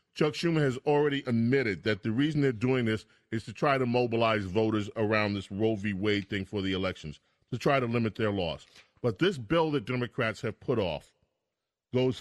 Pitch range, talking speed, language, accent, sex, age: 110-145 Hz, 200 wpm, English, American, male, 40-59